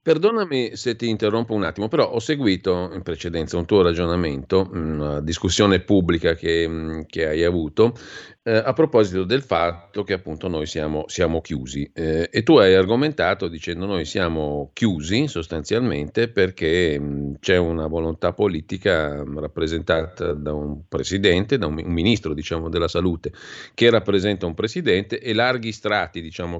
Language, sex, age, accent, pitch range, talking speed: Italian, male, 50-69, native, 80-100 Hz, 150 wpm